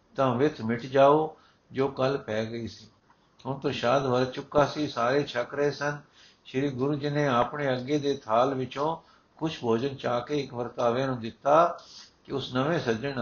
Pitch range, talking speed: 120-150 Hz, 175 wpm